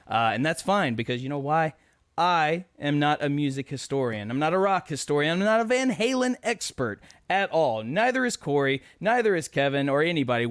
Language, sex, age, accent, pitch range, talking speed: English, male, 30-49, American, 130-160 Hz, 200 wpm